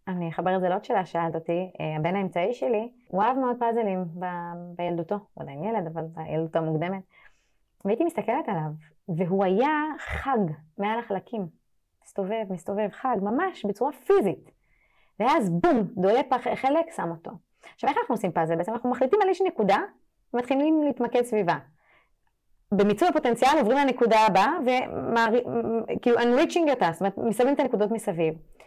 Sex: female